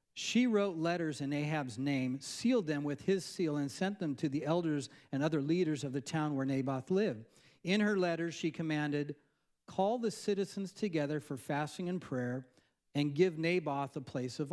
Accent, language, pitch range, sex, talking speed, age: American, English, 130-170 Hz, male, 185 wpm, 40-59